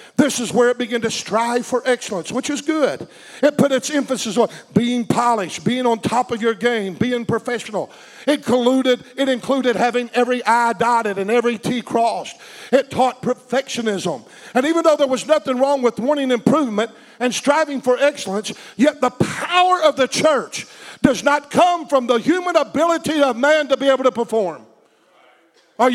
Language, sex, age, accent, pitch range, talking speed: English, male, 50-69, American, 230-280 Hz, 175 wpm